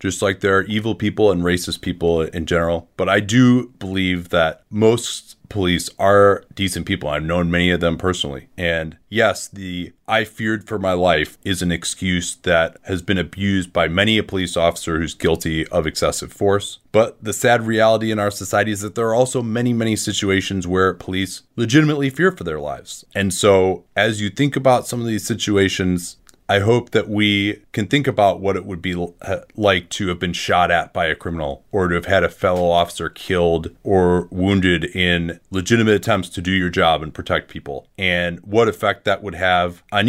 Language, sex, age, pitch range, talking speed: English, male, 30-49, 90-110 Hz, 195 wpm